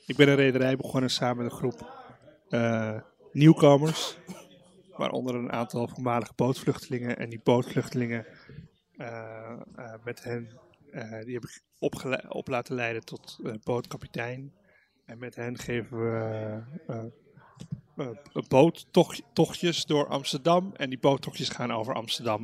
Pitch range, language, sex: 120-145 Hz, Dutch, male